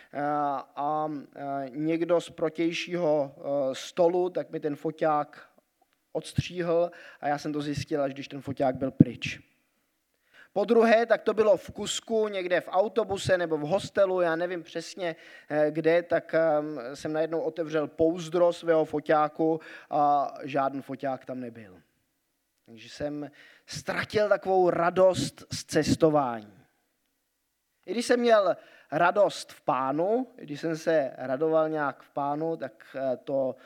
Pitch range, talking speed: 145-190 Hz, 130 wpm